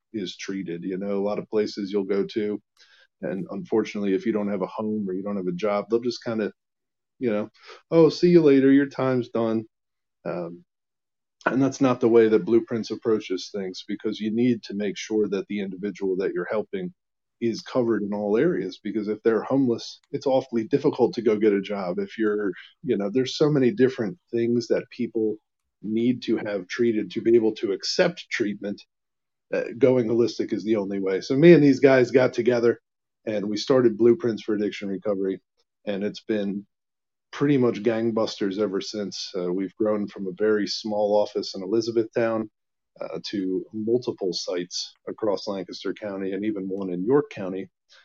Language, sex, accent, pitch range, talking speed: English, male, American, 100-120 Hz, 185 wpm